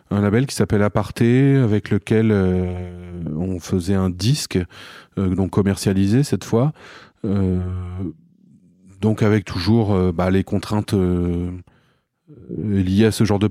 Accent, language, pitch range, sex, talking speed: French, French, 90-110 Hz, male, 140 wpm